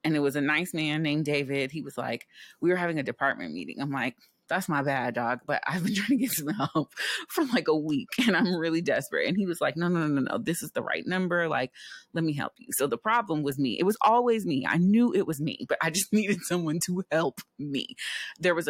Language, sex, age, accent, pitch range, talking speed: English, female, 30-49, American, 135-170 Hz, 265 wpm